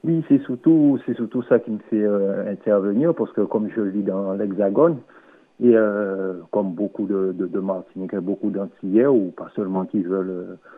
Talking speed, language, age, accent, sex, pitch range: 195 wpm, French, 60-79, French, male, 105-150 Hz